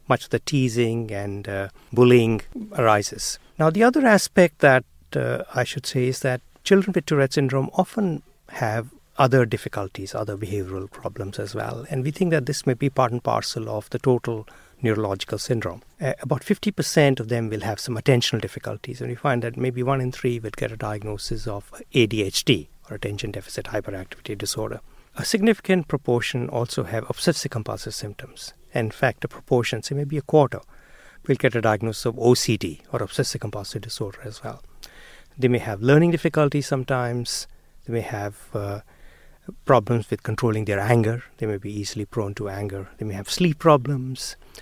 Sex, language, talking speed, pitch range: male, English, 180 wpm, 105-135 Hz